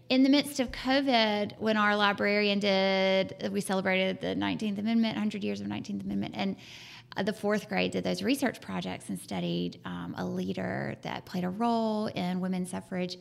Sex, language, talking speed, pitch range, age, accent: female, English, 180 wpm, 190-245 Hz, 20-39, American